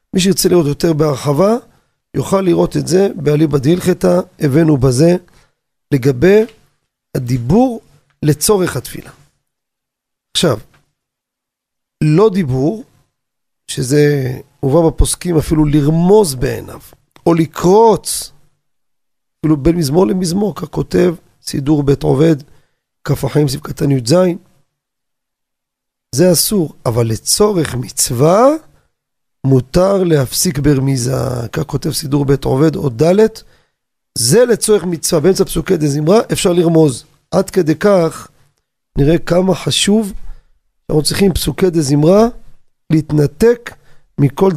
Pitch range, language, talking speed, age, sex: 140-180 Hz, Hebrew, 105 wpm, 40-59, male